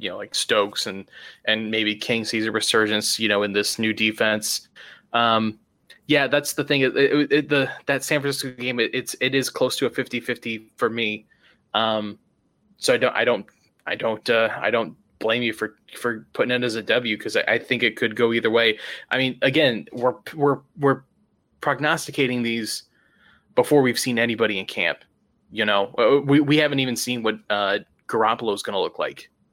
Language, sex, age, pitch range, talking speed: English, male, 20-39, 110-140 Hz, 195 wpm